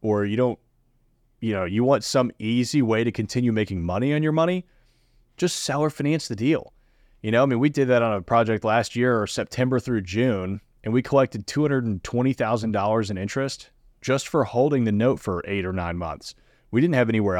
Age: 30-49